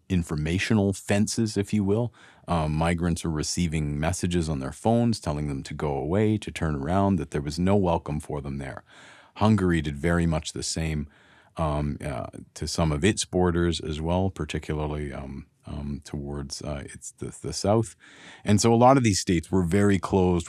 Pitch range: 80-105 Hz